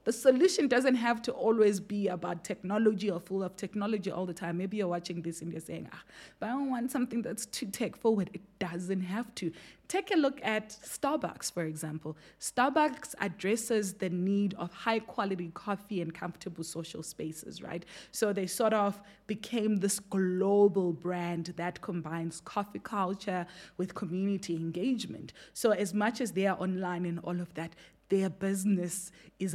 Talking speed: 175 wpm